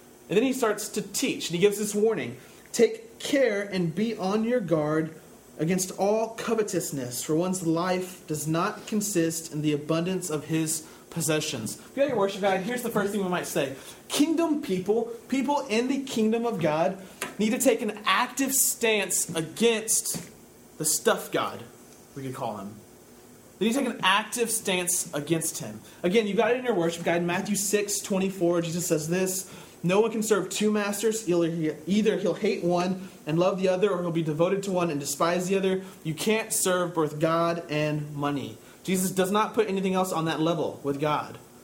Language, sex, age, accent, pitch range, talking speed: English, male, 30-49, American, 160-210 Hz, 195 wpm